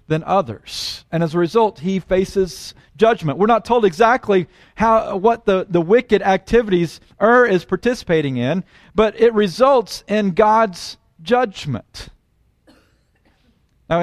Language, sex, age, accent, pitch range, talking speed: English, male, 40-59, American, 155-215 Hz, 130 wpm